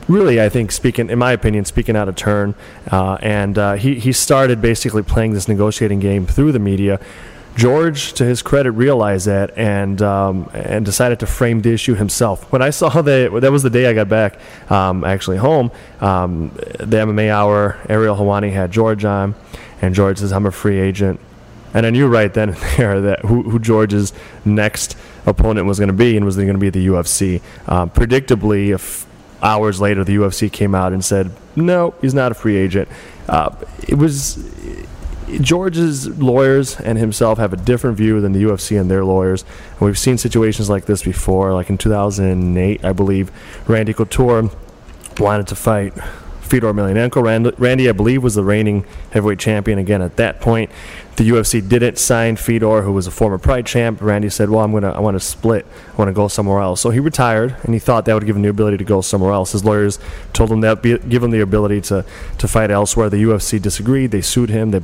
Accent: American